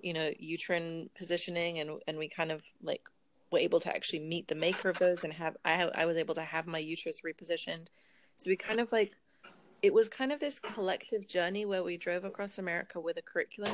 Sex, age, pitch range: female, 20-39, 165-200 Hz